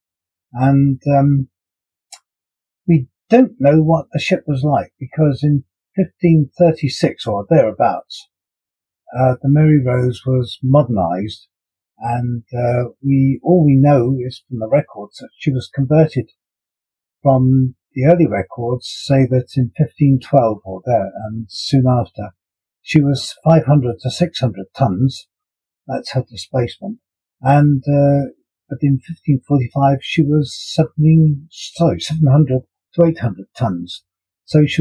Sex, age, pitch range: male, 50-69, 120-150 Hz